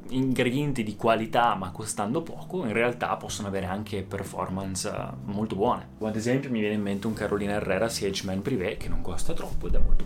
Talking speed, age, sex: 190 wpm, 20-39, male